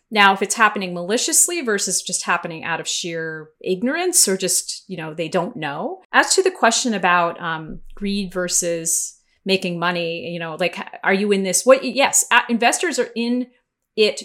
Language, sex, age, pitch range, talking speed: English, female, 30-49, 185-245 Hz, 175 wpm